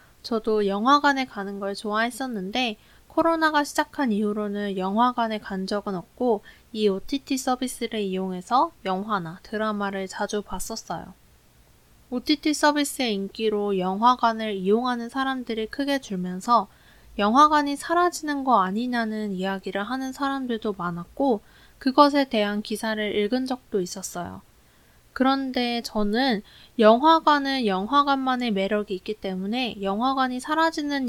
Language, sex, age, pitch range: Korean, female, 20-39, 205-265 Hz